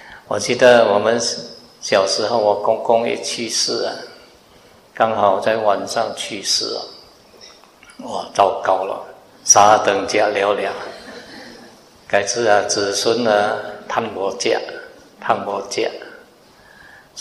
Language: Chinese